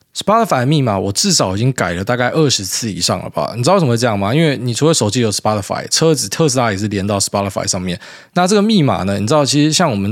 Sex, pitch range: male, 110-150 Hz